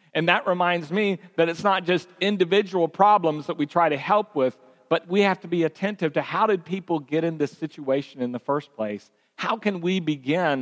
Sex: male